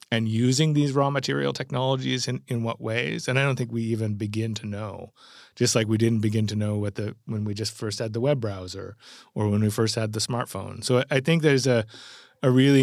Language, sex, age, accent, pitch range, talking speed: English, male, 30-49, American, 110-125 Hz, 235 wpm